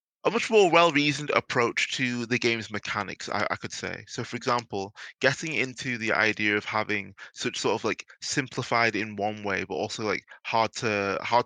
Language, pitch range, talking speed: English, 100-120 Hz, 180 wpm